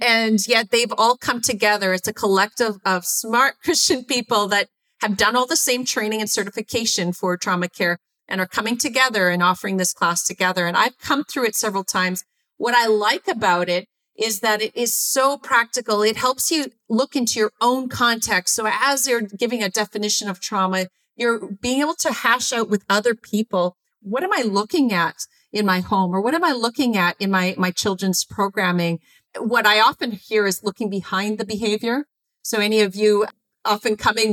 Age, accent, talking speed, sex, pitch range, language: 40-59, American, 195 wpm, female, 185-235 Hz, English